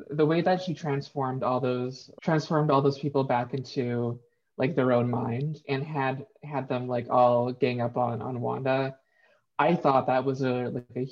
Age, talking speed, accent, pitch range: 20-39, 190 wpm, American, 125-145 Hz